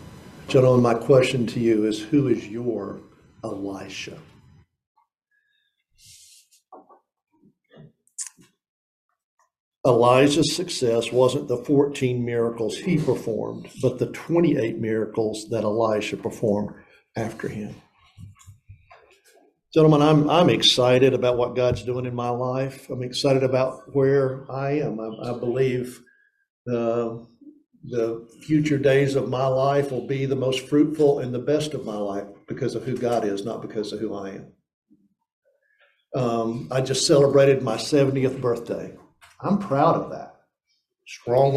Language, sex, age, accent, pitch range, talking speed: English, male, 60-79, American, 120-150 Hz, 125 wpm